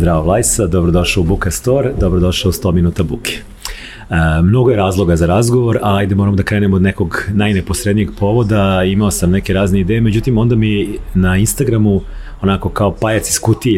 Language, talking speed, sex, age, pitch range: English, 180 wpm, male, 40-59, 85-110 Hz